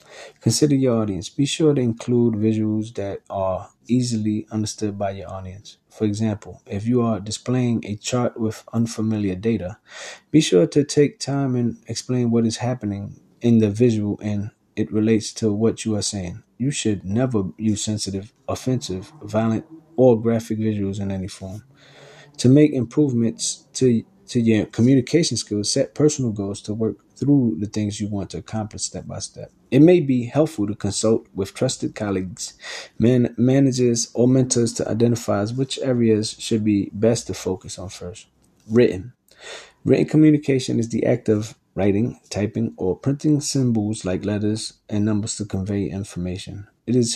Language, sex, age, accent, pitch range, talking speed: English, male, 20-39, American, 100-125 Hz, 160 wpm